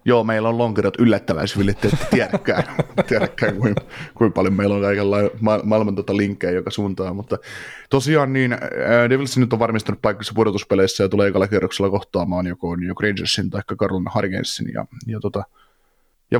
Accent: native